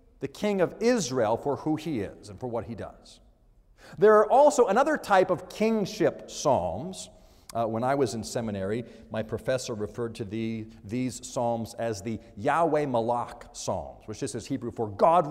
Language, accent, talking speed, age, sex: English, American, 170 wpm, 40-59, male